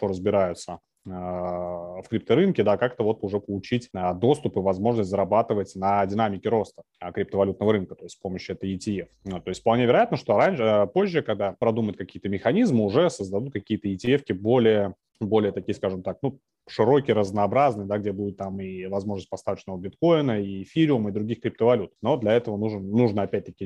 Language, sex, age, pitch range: Russian, male, 30-49, 95-115 Hz